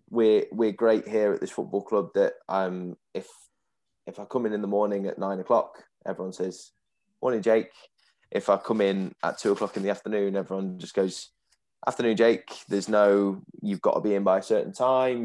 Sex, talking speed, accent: male, 205 wpm, British